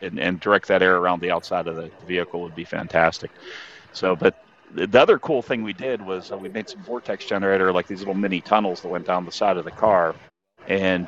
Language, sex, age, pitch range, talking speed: English, male, 40-59, 85-100 Hz, 235 wpm